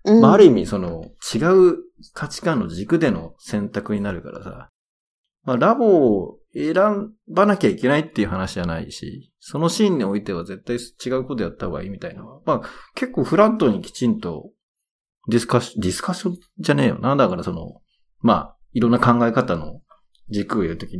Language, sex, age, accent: Japanese, male, 40-59, native